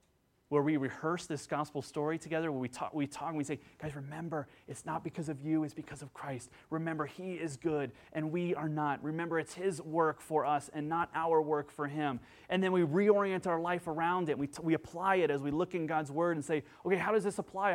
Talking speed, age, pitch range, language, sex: 245 wpm, 30-49, 155-215 Hz, English, male